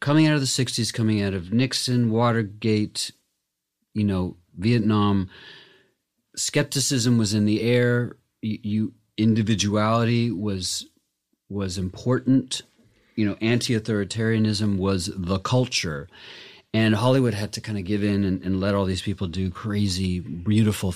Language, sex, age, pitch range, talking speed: English, male, 40-59, 90-115 Hz, 130 wpm